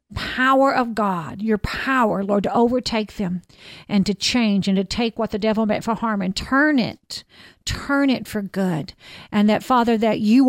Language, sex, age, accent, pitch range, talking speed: English, female, 50-69, American, 190-230 Hz, 190 wpm